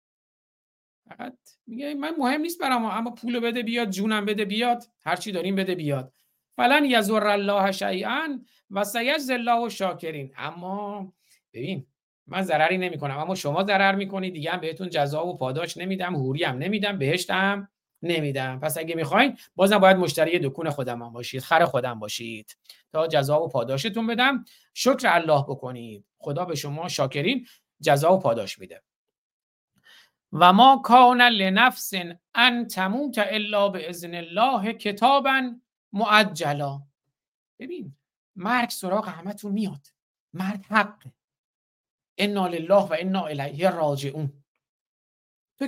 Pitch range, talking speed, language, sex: 160-230 Hz, 125 wpm, Persian, male